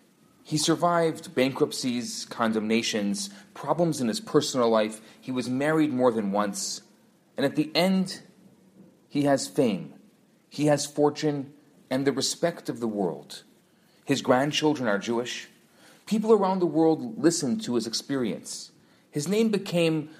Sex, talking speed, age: male, 135 wpm, 40-59